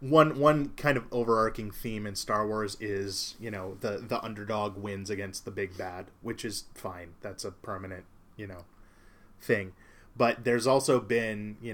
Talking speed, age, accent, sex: 175 wpm, 20-39, American, male